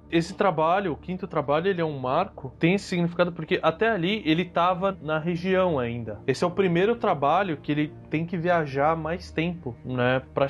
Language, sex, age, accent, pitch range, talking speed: Portuguese, male, 20-39, Brazilian, 140-175 Hz, 195 wpm